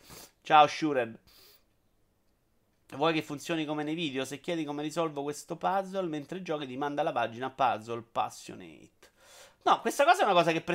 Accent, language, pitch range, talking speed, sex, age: native, Italian, 135-170 Hz, 165 wpm, male, 30-49